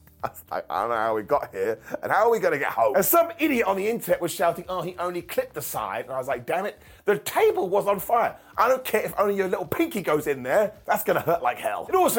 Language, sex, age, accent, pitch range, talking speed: English, male, 30-49, British, 145-230 Hz, 305 wpm